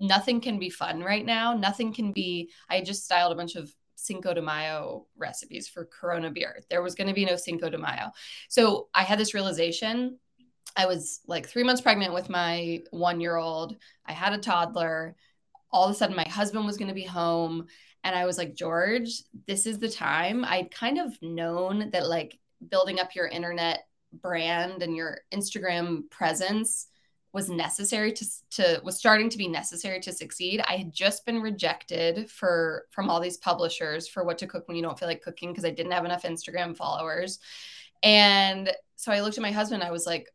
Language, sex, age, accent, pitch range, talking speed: English, female, 20-39, American, 170-210 Hz, 195 wpm